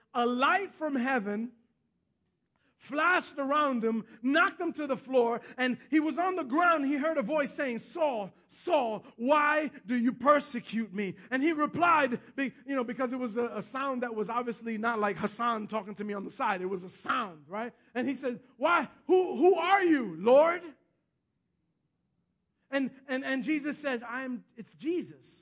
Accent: American